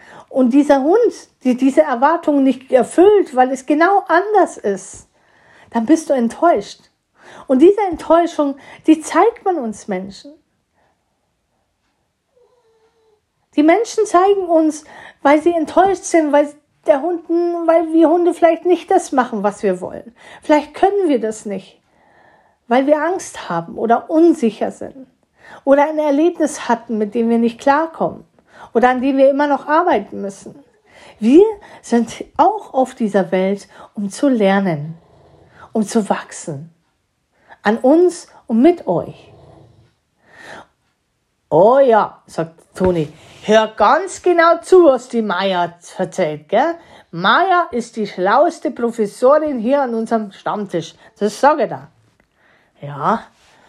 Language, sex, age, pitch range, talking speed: German, female, 40-59, 215-335 Hz, 130 wpm